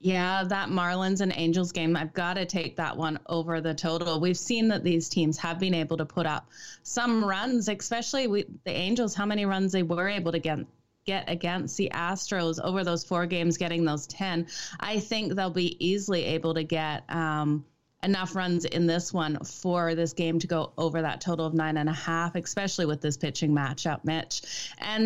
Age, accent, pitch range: 20-39, American, 165-205 Hz